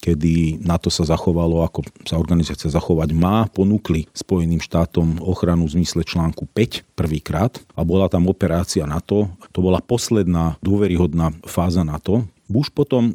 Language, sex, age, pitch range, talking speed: Slovak, male, 40-59, 85-100 Hz, 140 wpm